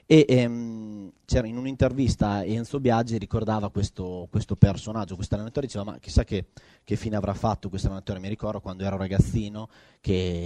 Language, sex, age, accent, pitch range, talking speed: Italian, male, 30-49, native, 95-120 Hz, 160 wpm